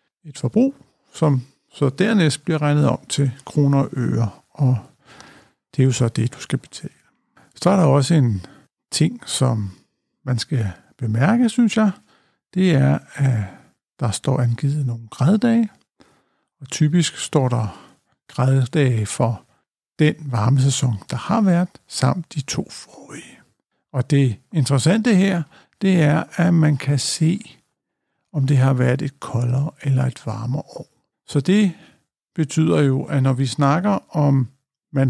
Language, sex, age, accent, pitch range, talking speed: Danish, male, 60-79, native, 130-165 Hz, 150 wpm